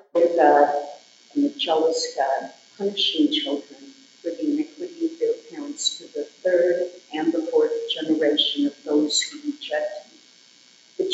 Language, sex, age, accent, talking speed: English, female, 50-69, American, 140 wpm